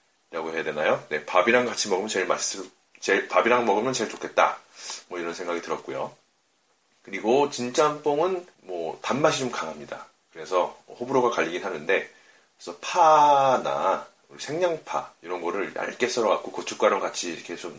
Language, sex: Korean, male